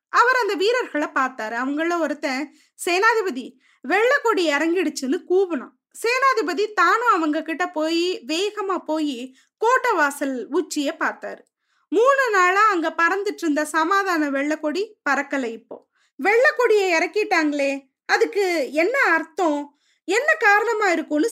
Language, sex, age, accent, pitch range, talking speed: Tamil, female, 20-39, native, 290-385 Hz, 105 wpm